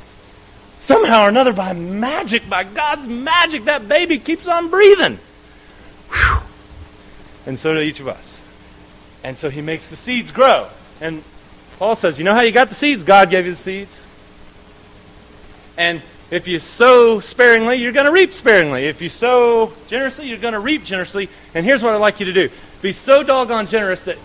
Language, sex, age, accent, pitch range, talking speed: English, male, 30-49, American, 170-265 Hz, 180 wpm